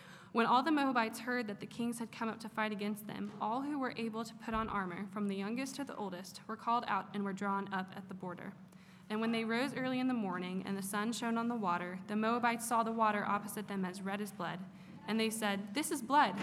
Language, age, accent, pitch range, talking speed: English, 20-39, American, 195-235 Hz, 260 wpm